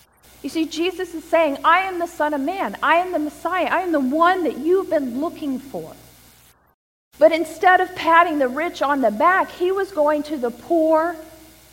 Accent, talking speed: American, 200 wpm